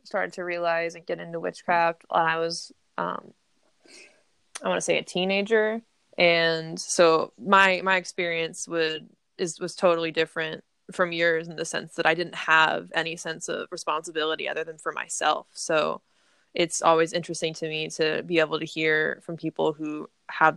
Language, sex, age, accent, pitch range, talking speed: English, female, 20-39, American, 155-170 Hz, 170 wpm